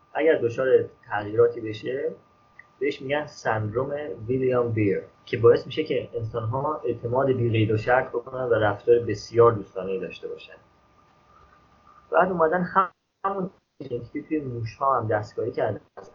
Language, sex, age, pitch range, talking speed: Persian, male, 30-49, 105-150 Hz, 135 wpm